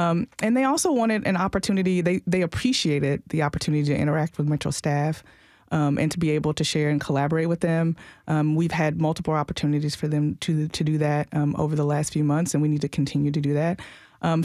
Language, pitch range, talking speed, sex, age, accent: English, 150-180 Hz, 225 wpm, female, 30-49, American